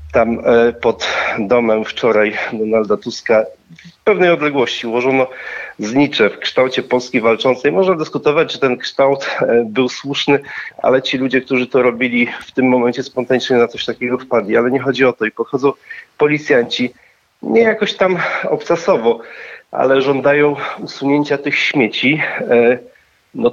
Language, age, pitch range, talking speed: Polish, 40-59, 115-145 Hz, 140 wpm